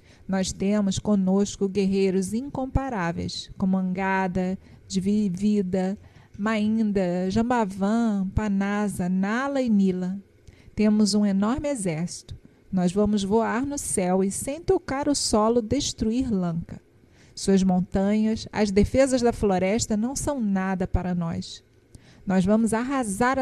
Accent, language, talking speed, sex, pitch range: Brazilian, Portuguese, 115 wpm, female, 190-230 Hz